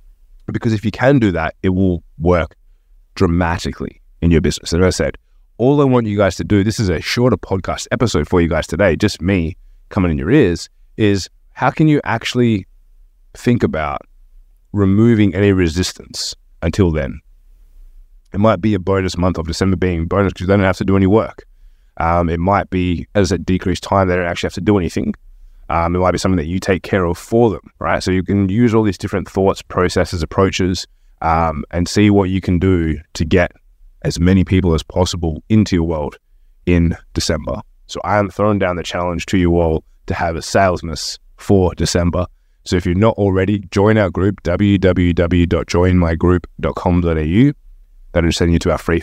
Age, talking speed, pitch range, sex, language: 20-39, 195 wpm, 85-100 Hz, male, English